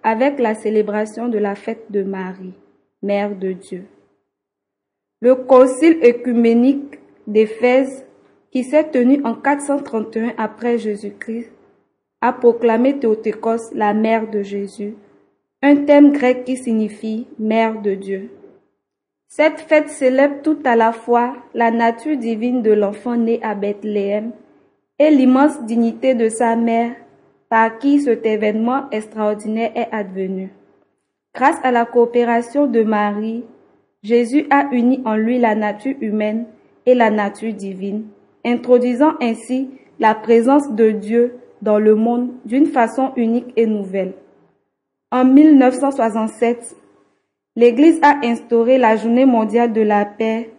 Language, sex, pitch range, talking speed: French, female, 215-255 Hz, 130 wpm